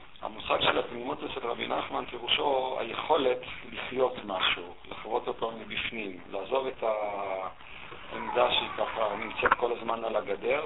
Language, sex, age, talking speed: Hebrew, male, 50-69, 130 wpm